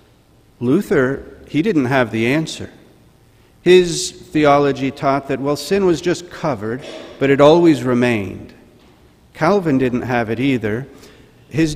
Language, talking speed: English, 130 wpm